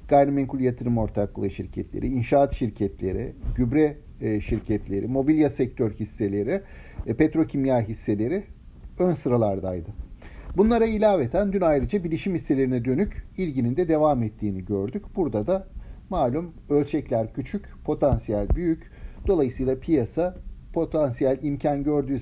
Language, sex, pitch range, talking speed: Turkish, male, 115-165 Hz, 105 wpm